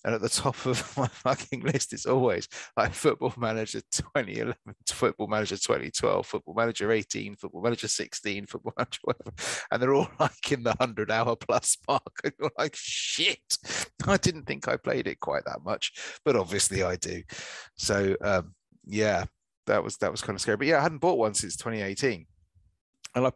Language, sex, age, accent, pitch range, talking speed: English, male, 30-49, British, 95-120 Hz, 175 wpm